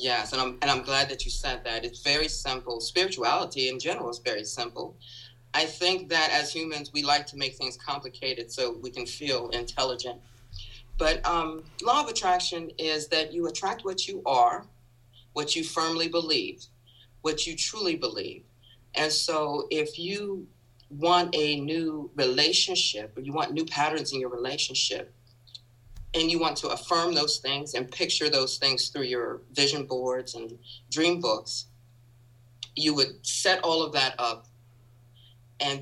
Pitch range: 120-160 Hz